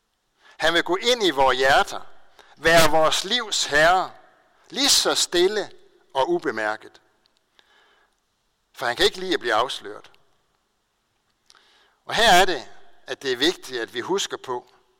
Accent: native